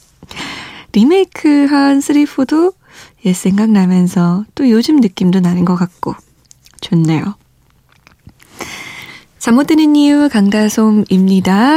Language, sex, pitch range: Korean, female, 180-260 Hz